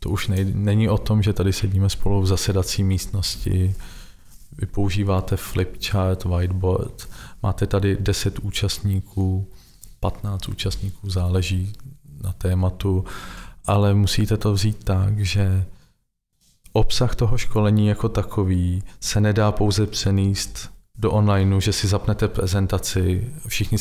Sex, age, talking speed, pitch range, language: male, 40-59, 120 wpm, 95-105 Hz, Czech